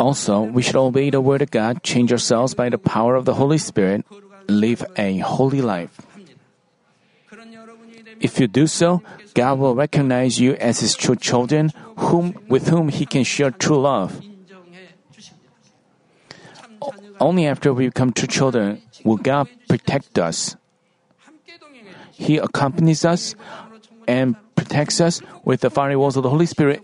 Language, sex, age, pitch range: Korean, male, 40-59, 130-175 Hz